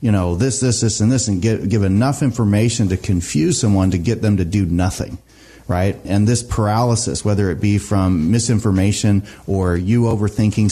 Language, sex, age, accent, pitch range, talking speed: English, male, 30-49, American, 100-120 Hz, 180 wpm